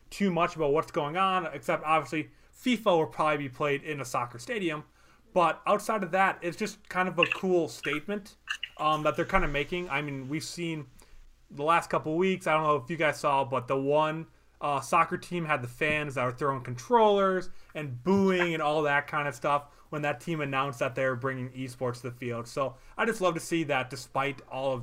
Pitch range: 130-170 Hz